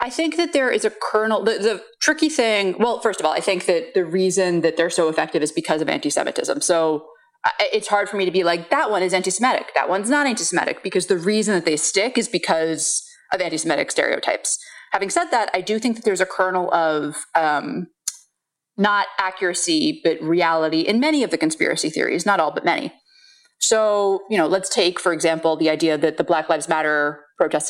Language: English